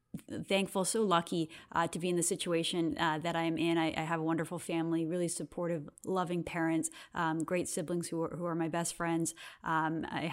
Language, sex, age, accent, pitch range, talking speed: English, female, 30-49, American, 160-180 Hz, 200 wpm